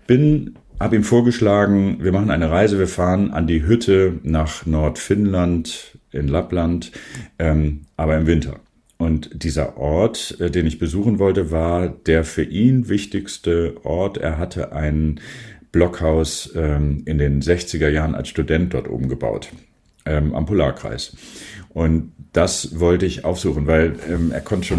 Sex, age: male, 40-59